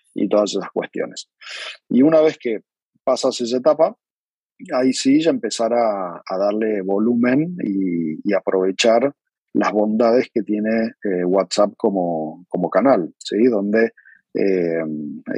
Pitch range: 95-115 Hz